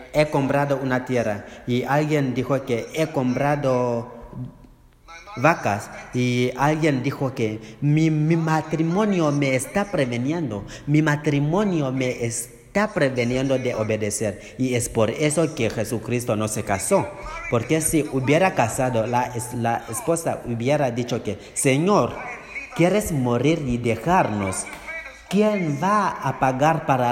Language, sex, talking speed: Spanish, male, 125 wpm